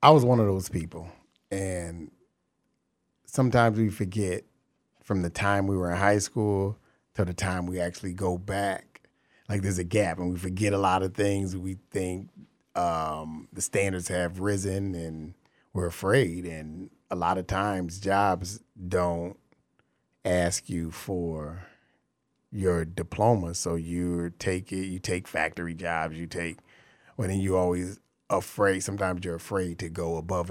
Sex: male